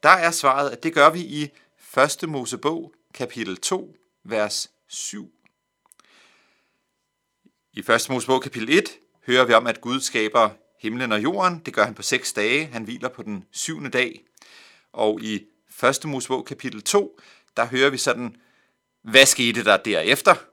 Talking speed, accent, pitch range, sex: 160 wpm, native, 105-140 Hz, male